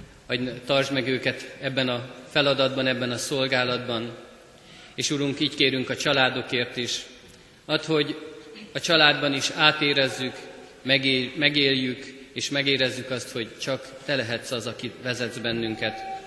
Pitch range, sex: 120-140 Hz, male